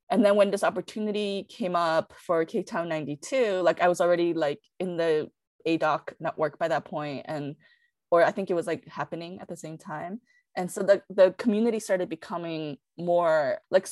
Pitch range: 175-215 Hz